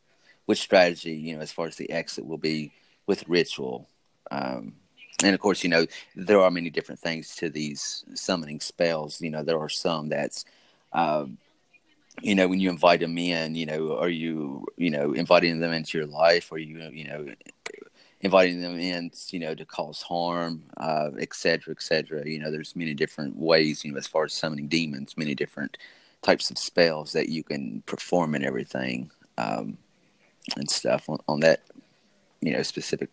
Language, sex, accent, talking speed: English, male, American, 185 wpm